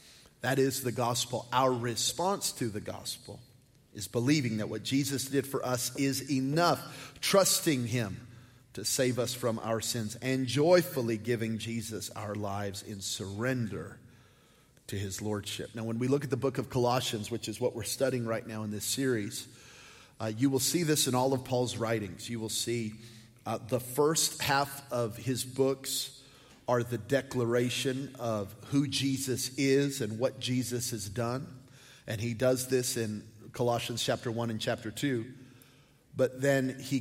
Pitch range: 115-135 Hz